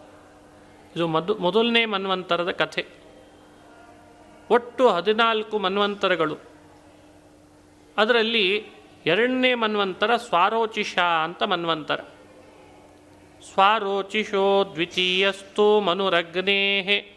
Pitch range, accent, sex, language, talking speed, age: 180-225 Hz, native, male, Kannada, 60 wpm, 40-59